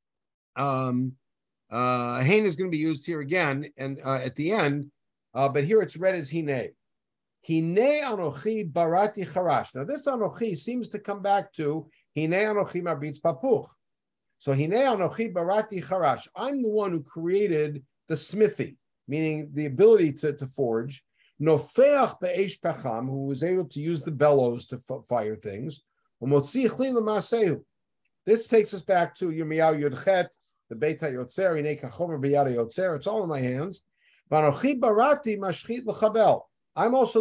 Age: 50-69